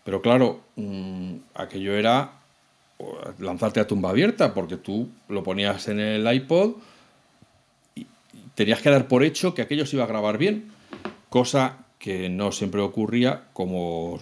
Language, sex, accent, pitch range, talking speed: Spanish, male, Spanish, 105-135 Hz, 150 wpm